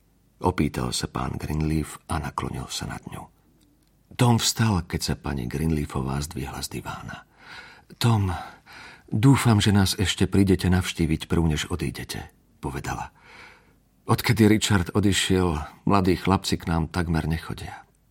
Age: 50-69